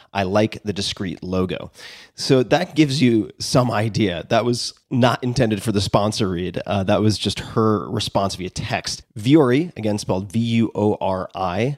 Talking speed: 155 wpm